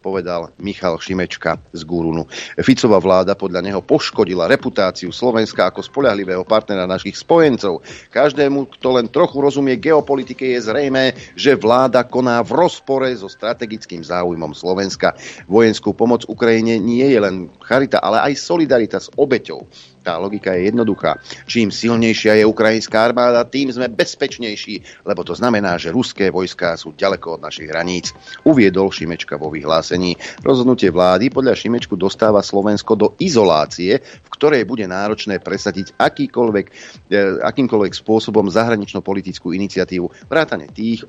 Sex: male